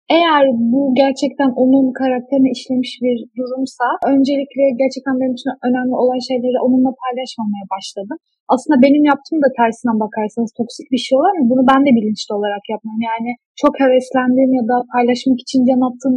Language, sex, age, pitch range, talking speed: Turkish, female, 10-29, 230-275 Hz, 160 wpm